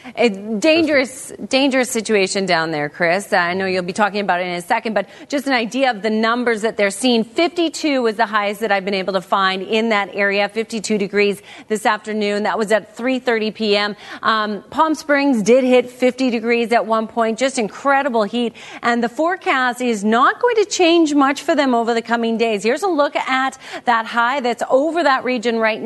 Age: 40-59